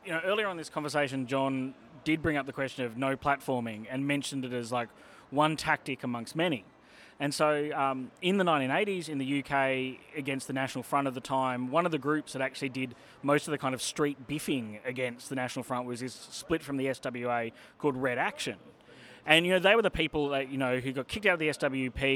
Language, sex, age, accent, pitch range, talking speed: English, male, 20-39, Australian, 130-155 Hz, 225 wpm